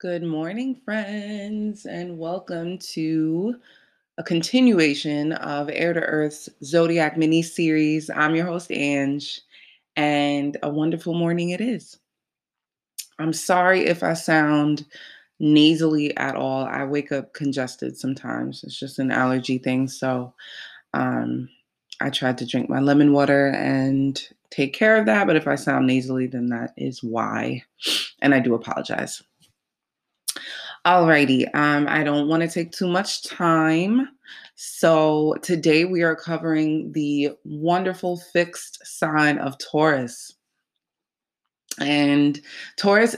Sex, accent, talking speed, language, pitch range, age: female, American, 130 wpm, English, 140-170 Hz, 20-39